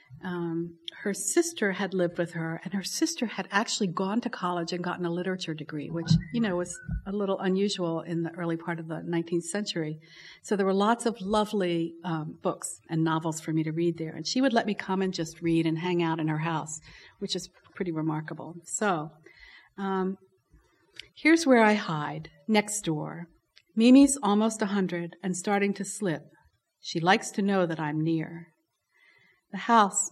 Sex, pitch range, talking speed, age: female, 165-205 Hz, 185 wpm, 50-69